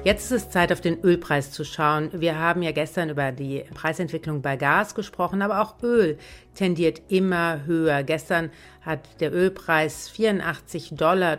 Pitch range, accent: 150-180 Hz, German